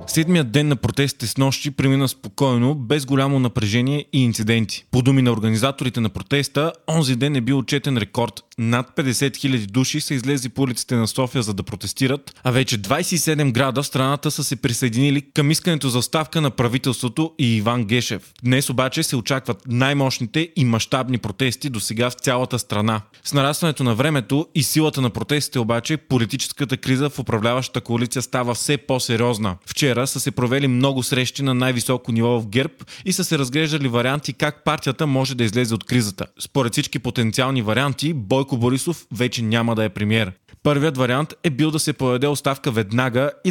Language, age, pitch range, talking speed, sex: Bulgarian, 20-39, 120-145 Hz, 175 wpm, male